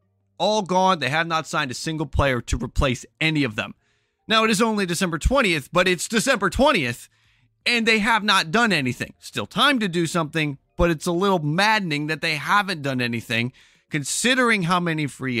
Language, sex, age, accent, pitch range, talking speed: English, male, 30-49, American, 135-190 Hz, 190 wpm